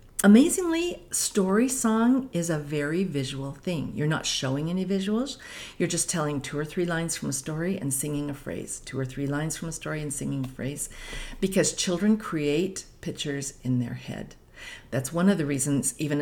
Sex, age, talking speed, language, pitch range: female, 50-69, 190 wpm, English, 135-175 Hz